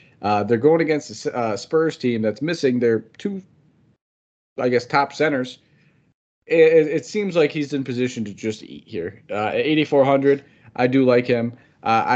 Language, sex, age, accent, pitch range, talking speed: English, male, 30-49, American, 110-135 Hz, 170 wpm